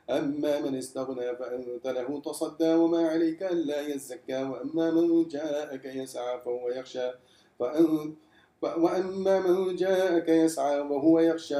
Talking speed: 115 wpm